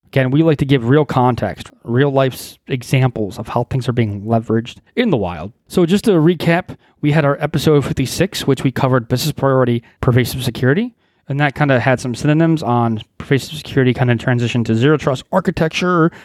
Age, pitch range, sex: 30-49, 120-150 Hz, male